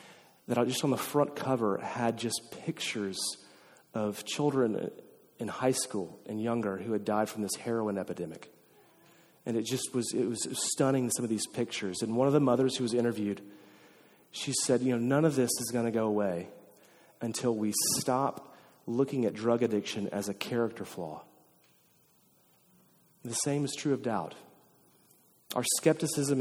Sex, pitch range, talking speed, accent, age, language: male, 110-130 Hz, 165 wpm, American, 30-49, English